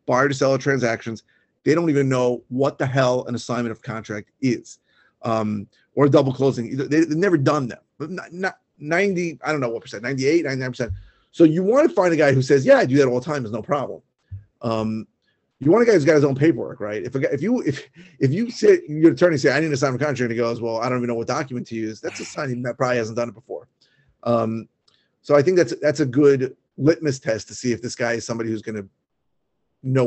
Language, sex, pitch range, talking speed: English, male, 115-150 Hz, 250 wpm